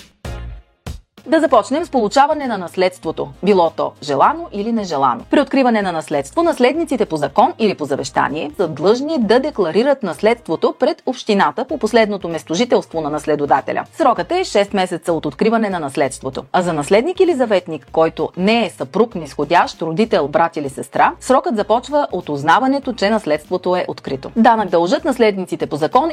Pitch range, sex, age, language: 160-260 Hz, female, 30-49, Bulgarian